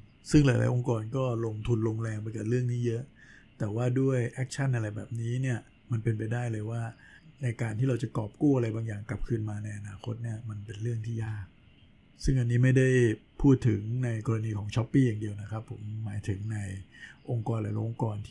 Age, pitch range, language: 60-79, 110-125 Hz, Thai